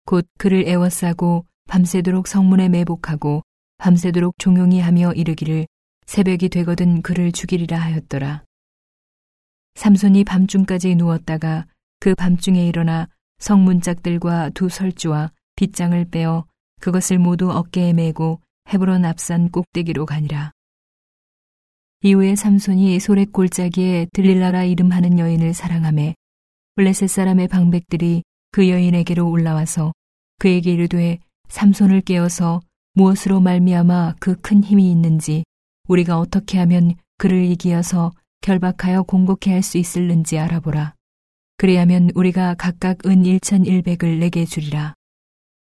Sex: female